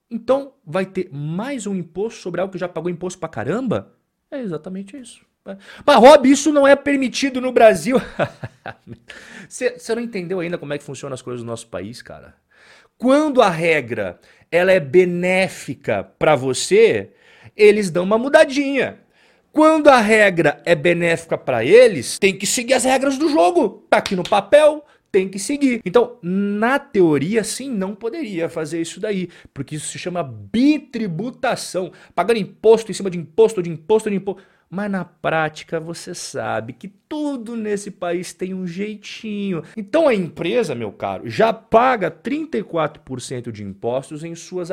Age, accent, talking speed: 40-59, Brazilian, 160 wpm